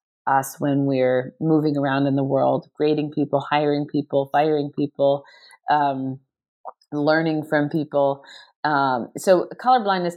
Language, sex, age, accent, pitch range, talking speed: English, female, 40-59, American, 140-195 Hz, 125 wpm